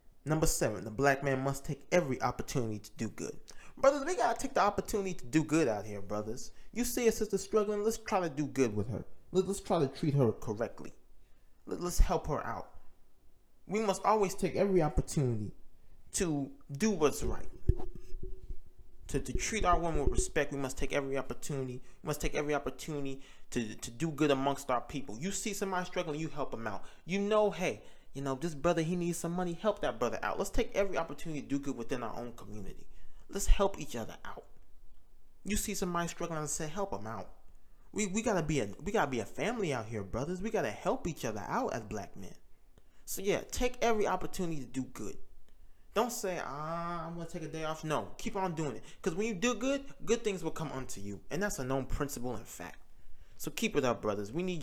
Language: English